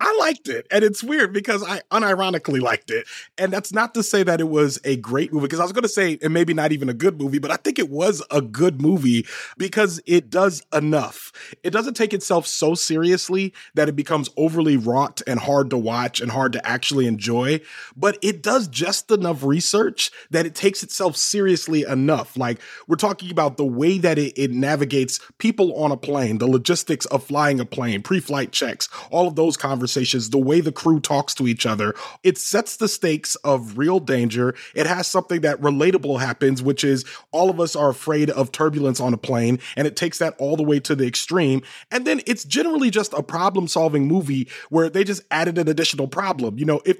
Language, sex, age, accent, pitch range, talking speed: English, male, 30-49, American, 140-195 Hz, 215 wpm